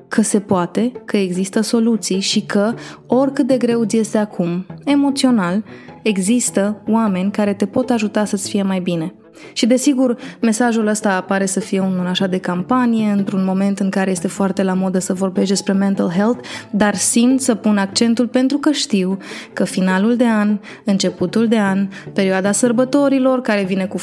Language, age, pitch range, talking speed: Romanian, 20-39, 195-240 Hz, 170 wpm